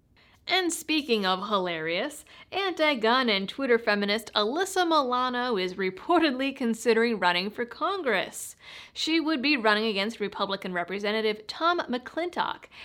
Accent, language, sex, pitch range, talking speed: American, English, female, 220-310 Hz, 115 wpm